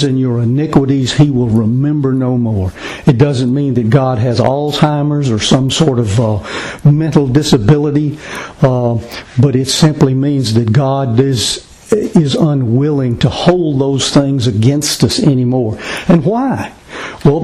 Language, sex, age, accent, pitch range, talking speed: English, male, 60-79, American, 125-160 Hz, 145 wpm